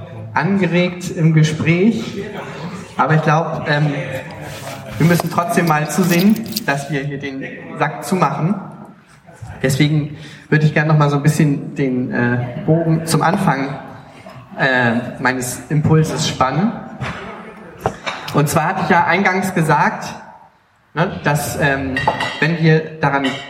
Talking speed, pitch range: 125 wpm, 140-170 Hz